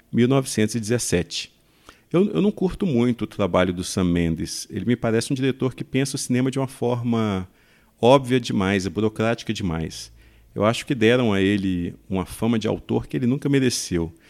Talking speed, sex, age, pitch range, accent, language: 175 wpm, male, 50-69, 95-125 Hz, Brazilian, Portuguese